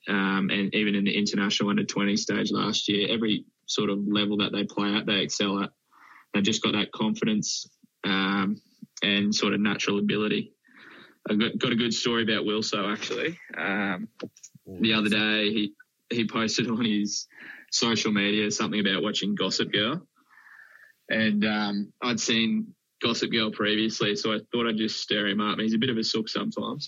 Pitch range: 105-115 Hz